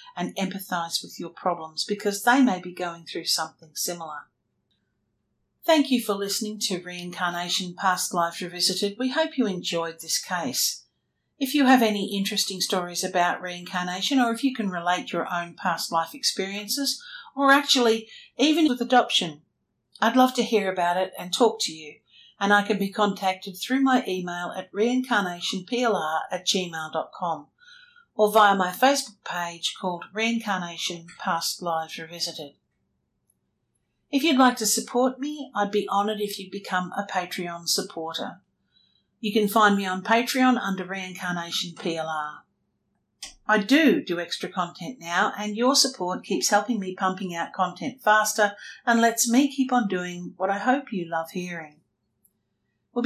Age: 50-69